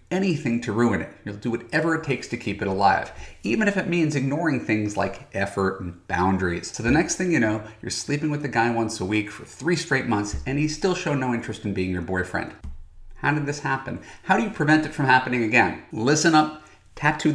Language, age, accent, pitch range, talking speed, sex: English, 30-49, American, 105-145 Hz, 230 wpm, male